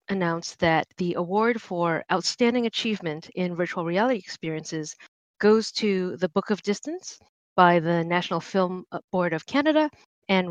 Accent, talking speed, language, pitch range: American, 145 wpm, English, 175-210 Hz